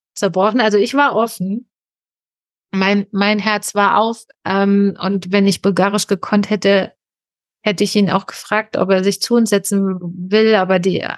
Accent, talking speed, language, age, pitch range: German, 165 wpm, German, 30-49, 190-215 Hz